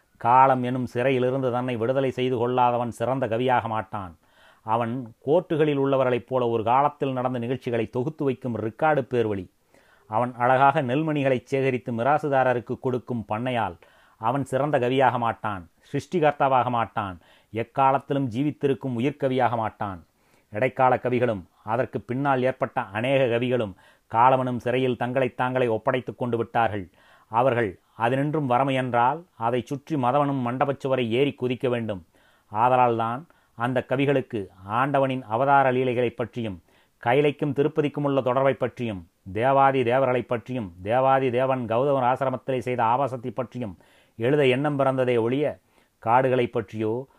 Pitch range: 115-135 Hz